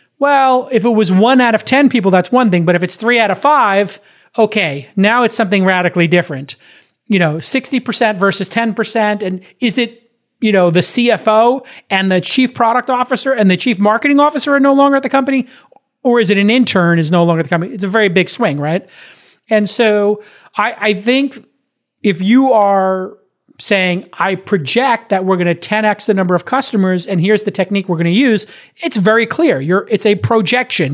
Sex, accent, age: male, American, 30-49